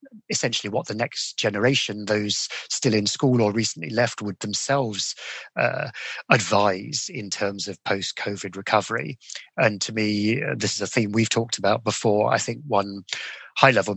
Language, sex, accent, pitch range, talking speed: English, male, British, 100-120 Hz, 160 wpm